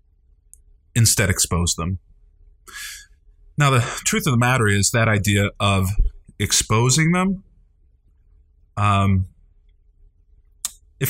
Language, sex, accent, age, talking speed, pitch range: English, male, American, 30-49, 90 wpm, 85-125 Hz